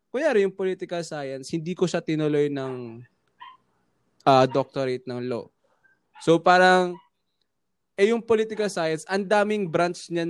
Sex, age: male, 20-39